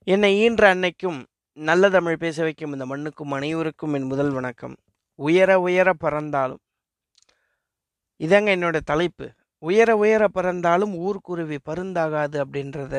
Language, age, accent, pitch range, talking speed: Tamil, 20-39, native, 145-185 Hz, 115 wpm